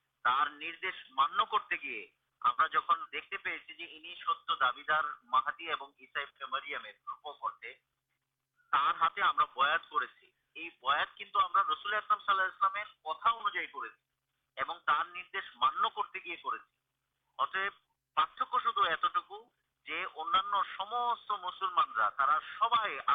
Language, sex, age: Urdu, male, 50-69